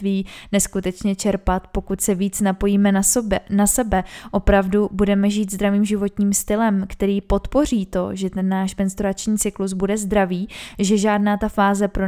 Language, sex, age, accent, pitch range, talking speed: Czech, female, 20-39, native, 190-205 Hz, 150 wpm